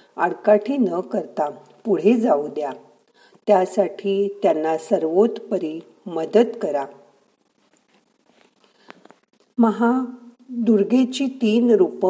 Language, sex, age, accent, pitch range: Marathi, female, 50-69, native, 175-230 Hz